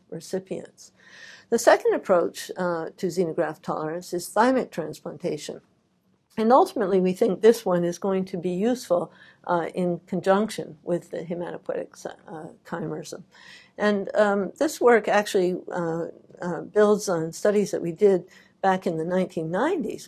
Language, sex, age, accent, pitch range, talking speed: English, female, 60-79, American, 175-230 Hz, 140 wpm